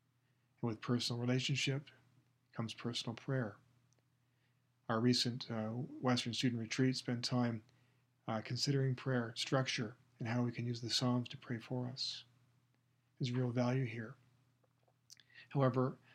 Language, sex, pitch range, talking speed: English, male, 120-130 Hz, 125 wpm